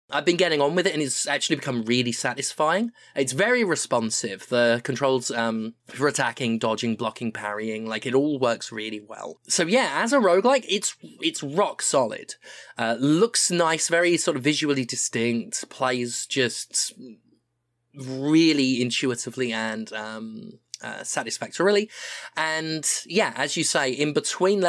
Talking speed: 150 wpm